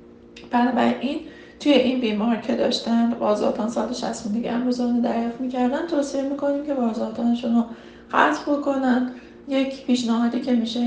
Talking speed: 135 wpm